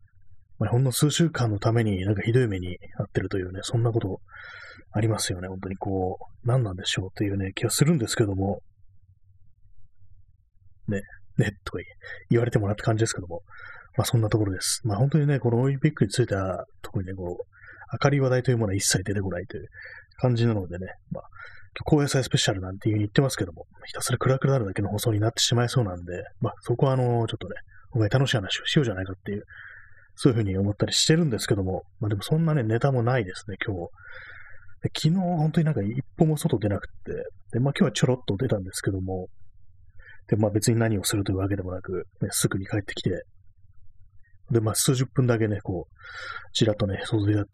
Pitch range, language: 95-125 Hz, Japanese